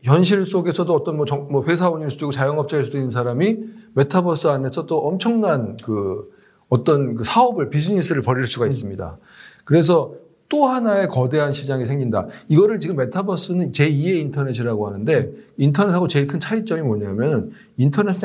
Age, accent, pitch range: 40-59, native, 135-190 Hz